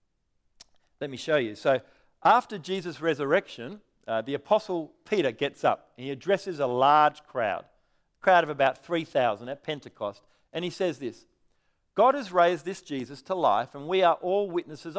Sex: male